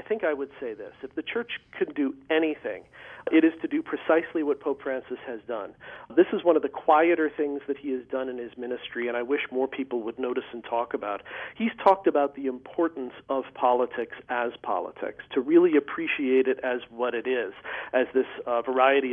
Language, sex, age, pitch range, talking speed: English, male, 40-59, 130-175 Hz, 210 wpm